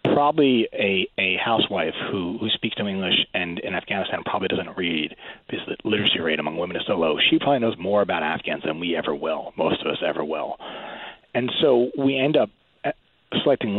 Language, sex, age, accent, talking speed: English, male, 30-49, American, 195 wpm